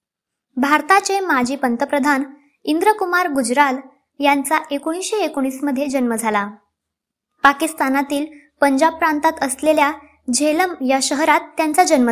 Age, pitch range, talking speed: 20-39, 265-320 Hz, 100 wpm